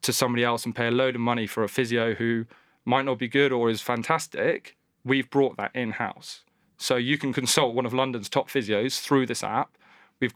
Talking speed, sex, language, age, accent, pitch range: 215 wpm, male, English, 20-39, British, 115-130 Hz